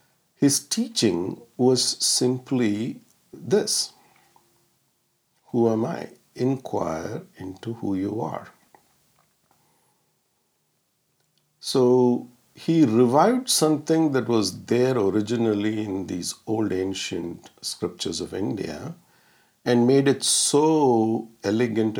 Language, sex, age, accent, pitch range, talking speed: English, male, 50-69, Indian, 105-140 Hz, 90 wpm